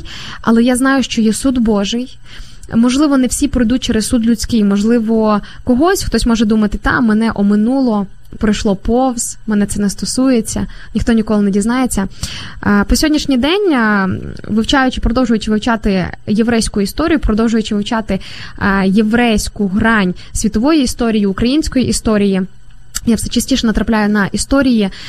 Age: 10-29